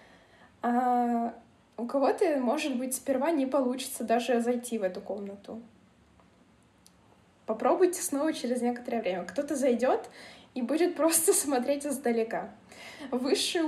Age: 20-39